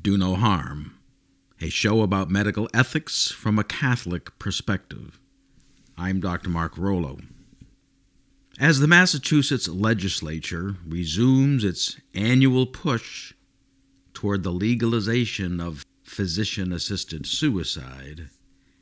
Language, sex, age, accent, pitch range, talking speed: English, male, 50-69, American, 90-135 Hz, 100 wpm